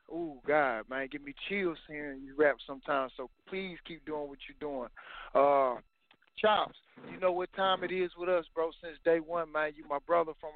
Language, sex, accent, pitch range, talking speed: English, male, American, 150-175 Hz, 205 wpm